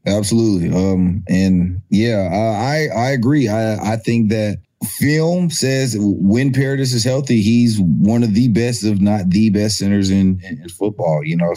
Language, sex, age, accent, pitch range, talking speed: English, male, 30-49, American, 95-115 Hz, 165 wpm